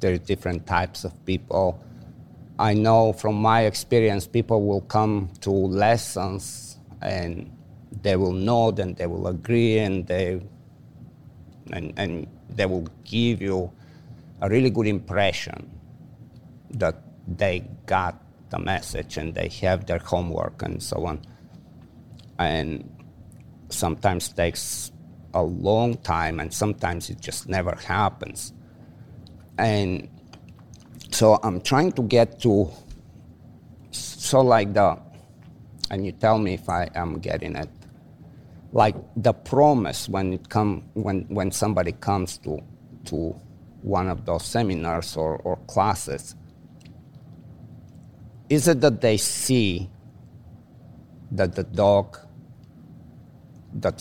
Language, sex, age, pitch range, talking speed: English, male, 50-69, 90-115 Hz, 120 wpm